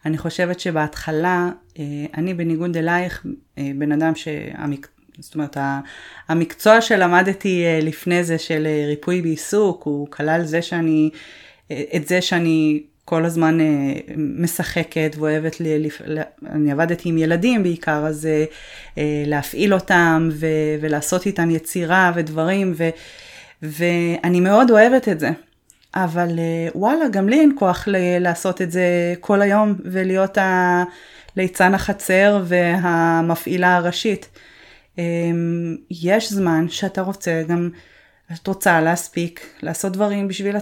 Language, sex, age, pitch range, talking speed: Hebrew, female, 20-39, 160-190 Hz, 110 wpm